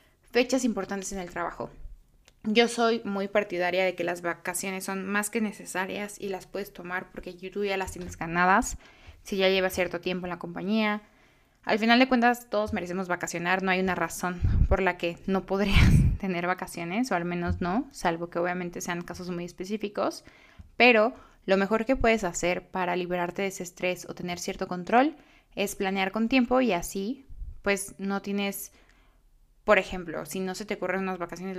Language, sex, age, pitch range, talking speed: Spanish, female, 20-39, 180-215 Hz, 185 wpm